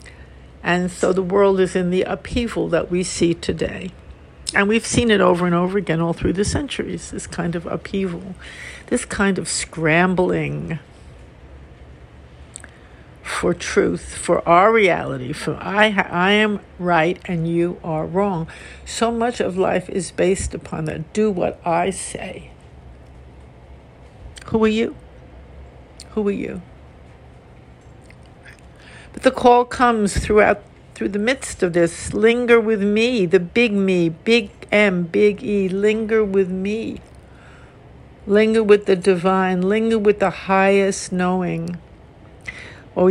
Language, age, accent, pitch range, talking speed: English, 60-79, American, 165-205 Hz, 135 wpm